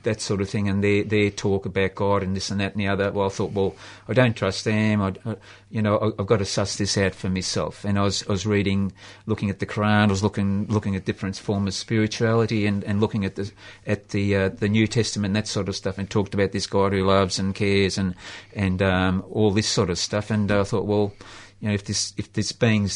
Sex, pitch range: male, 100-110 Hz